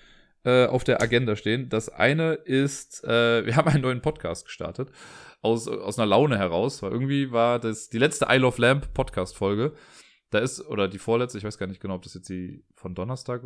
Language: German